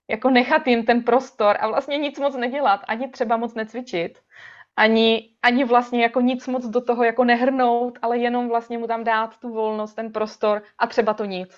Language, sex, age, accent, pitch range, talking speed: Czech, female, 20-39, native, 200-240 Hz, 195 wpm